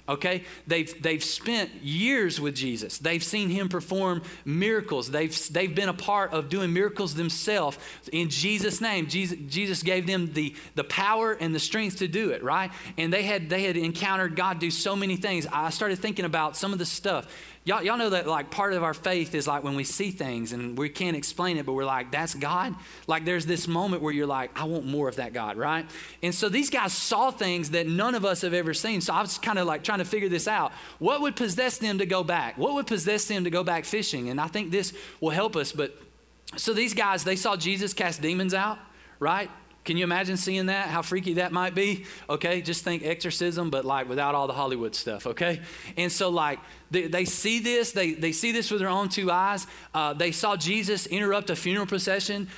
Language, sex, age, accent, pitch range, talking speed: English, male, 30-49, American, 160-195 Hz, 225 wpm